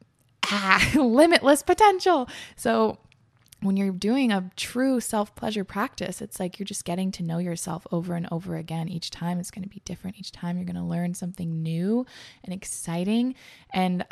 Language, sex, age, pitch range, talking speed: English, female, 20-39, 170-205 Hz, 175 wpm